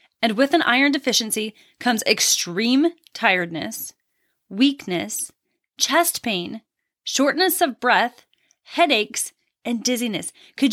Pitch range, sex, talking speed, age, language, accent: 230-300 Hz, female, 100 wpm, 20-39, English, American